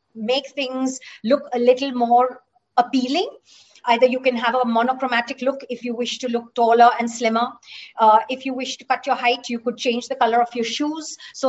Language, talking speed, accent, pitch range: Hindi, 205 wpm, native, 230-275 Hz